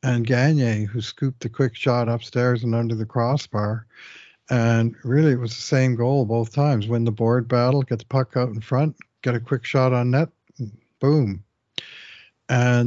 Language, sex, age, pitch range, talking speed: English, male, 60-79, 115-135 Hz, 185 wpm